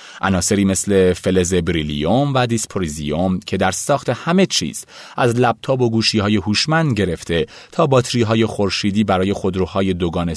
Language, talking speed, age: Persian, 135 wpm, 30-49